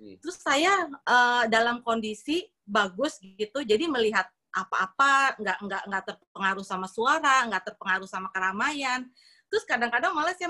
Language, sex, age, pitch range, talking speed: Indonesian, female, 30-49, 210-305 Hz, 125 wpm